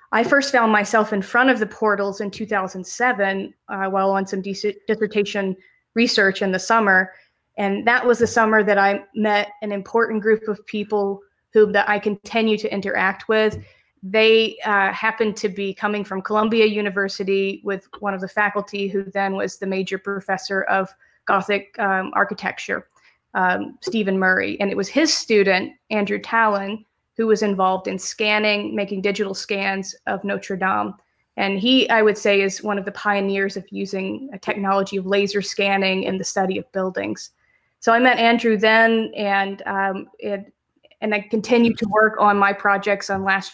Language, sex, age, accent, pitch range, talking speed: English, female, 20-39, American, 195-215 Hz, 170 wpm